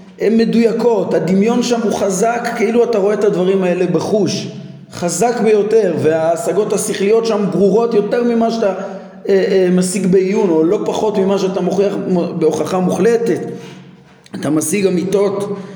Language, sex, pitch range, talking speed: Hebrew, male, 175-230 Hz, 140 wpm